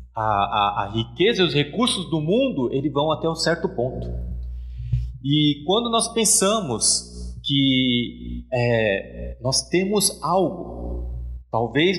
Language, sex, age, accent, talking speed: Portuguese, male, 30-49, Brazilian, 125 wpm